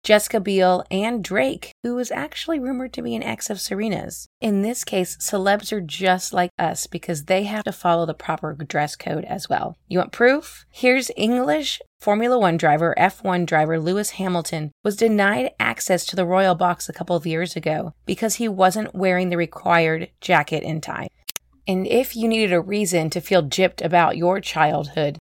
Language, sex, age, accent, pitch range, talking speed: English, female, 30-49, American, 165-215 Hz, 185 wpm